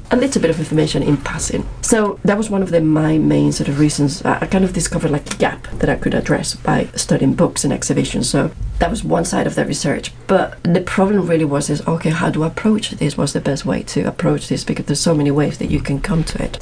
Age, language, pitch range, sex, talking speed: 40-59, English, 155-190 Hz, female, 255 wpm